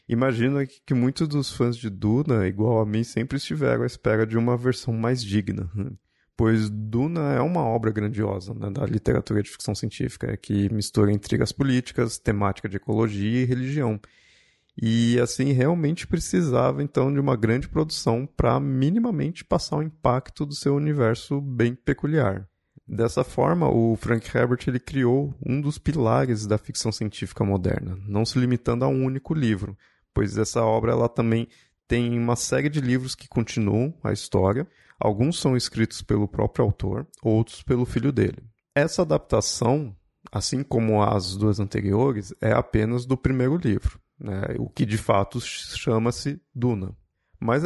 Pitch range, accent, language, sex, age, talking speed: 110-130 Hz, Brazilian, Portuguese, male, 20-39, 155 wpm